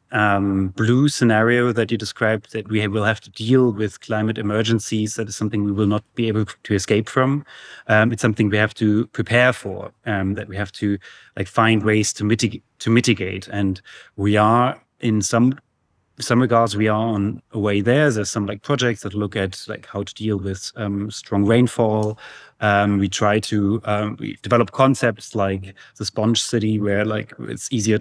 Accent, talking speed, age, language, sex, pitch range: German, 195 wpm, 30-49, English, male, 105-115 Hz